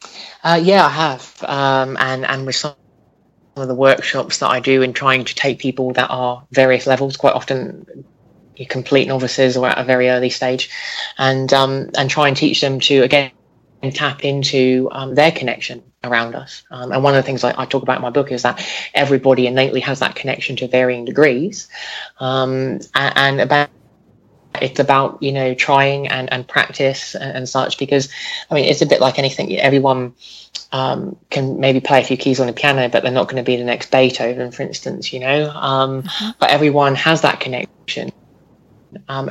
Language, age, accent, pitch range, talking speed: English, 20-39, British, 130-145 Hz, 190 wpm